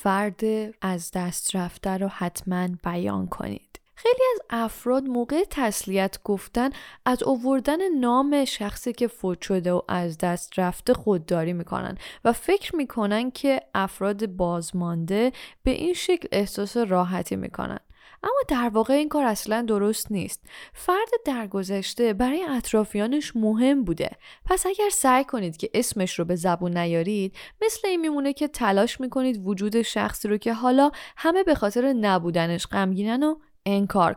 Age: 10-29